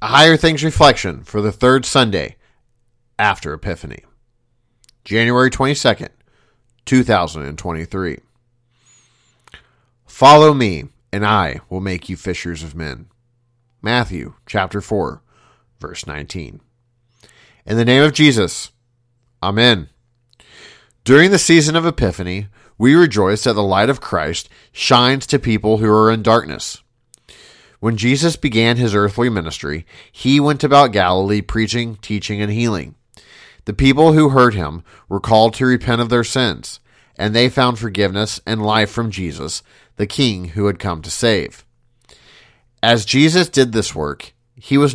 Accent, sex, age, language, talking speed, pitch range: American, male, 40-59, English, 135 wpm, 100-125 Hz